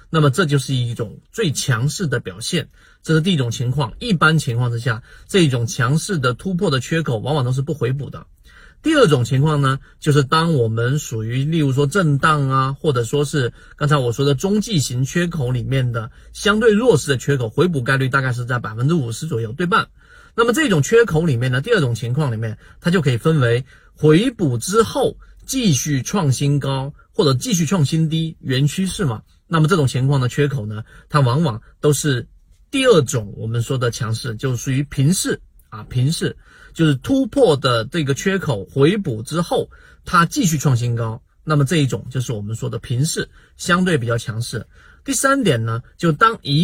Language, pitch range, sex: Chinese, 125-165 Hz, male